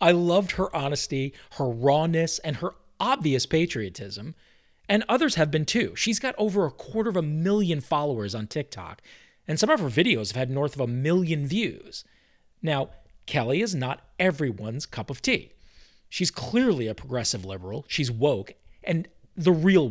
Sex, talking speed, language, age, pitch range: male, 170 wpm, English, 40-59, 130-175 Hz